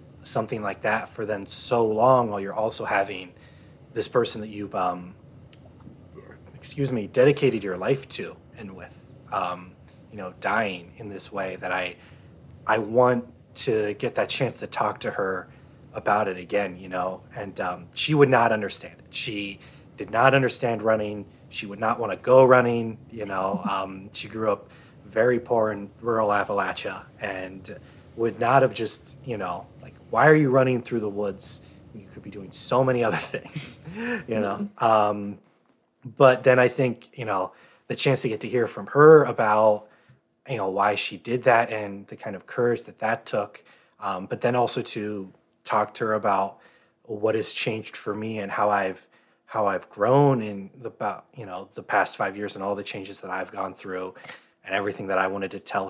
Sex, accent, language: male, American, English